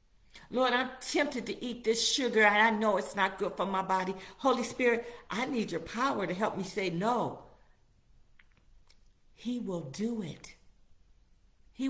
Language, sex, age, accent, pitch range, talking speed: English, female, 50-69, American, 145-225 Hz, 160 wpm